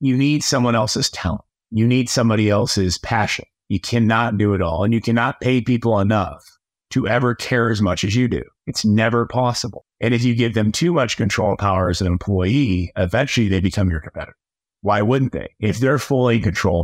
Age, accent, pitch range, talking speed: 30-49, American, 100-125 Hz, 205 wpm